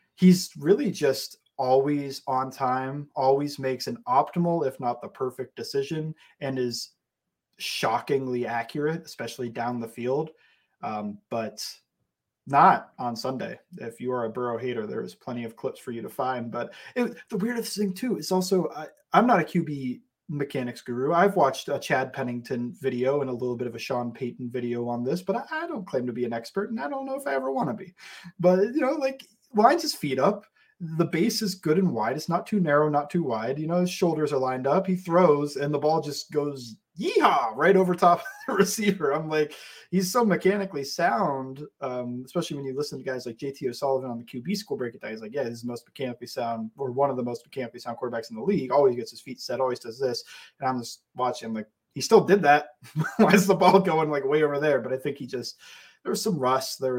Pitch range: 125-185 Hz